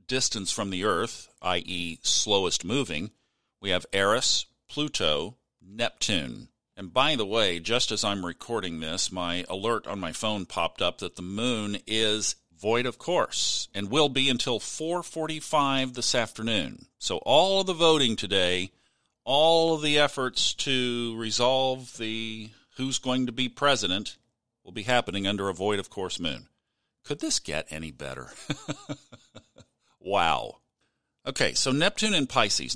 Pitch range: 100-130 Hz